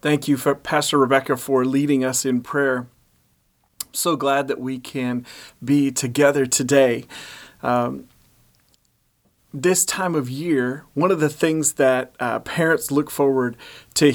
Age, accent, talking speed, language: 30-49, American, 140 wpm, English